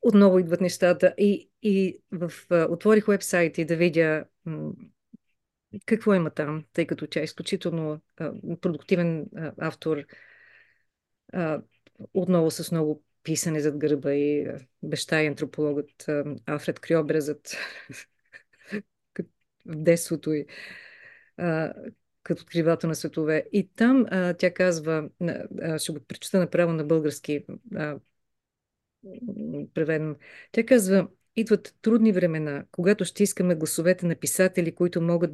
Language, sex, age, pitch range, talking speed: Bulgarian, female, 30-49, 155-185 Hz, 125 wpm